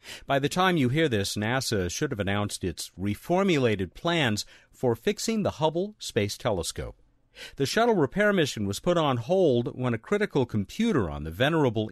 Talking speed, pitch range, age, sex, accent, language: 170 wpm, 105-165 Hz, 50-69, male, American, English